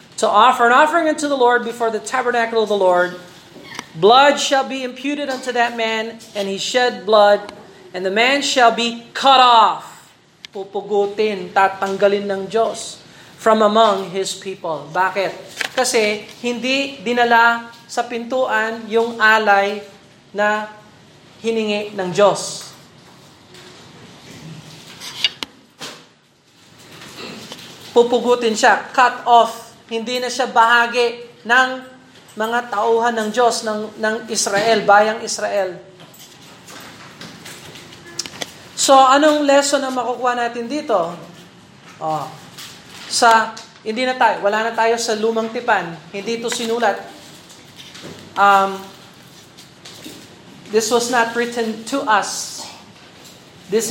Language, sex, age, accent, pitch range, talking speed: Filipino, male, 40-59, native, 205-245 Hz, 110 wpm